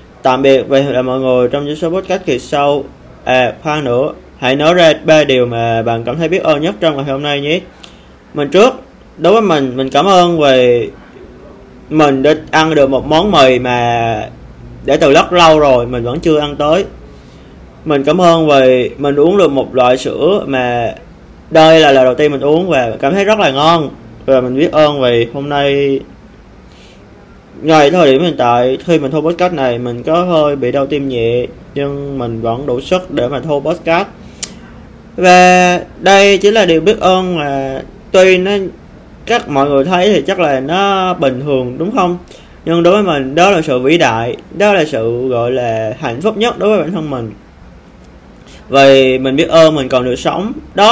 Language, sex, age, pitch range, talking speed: Vietnamese, male, 20-39, 125-170 Hz, 200 wpm